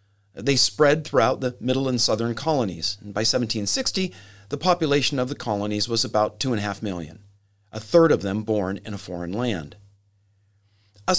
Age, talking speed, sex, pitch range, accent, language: 40-59, 175 wpm, male, 100-145 Hz, American, English